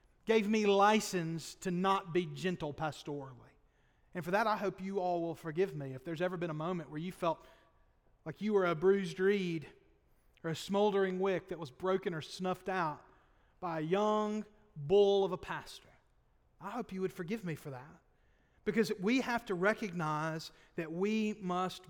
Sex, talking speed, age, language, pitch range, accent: male, 180 wpm, 40-59, English, 160-215 Hz, American